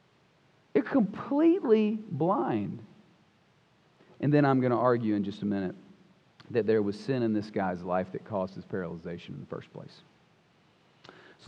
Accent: American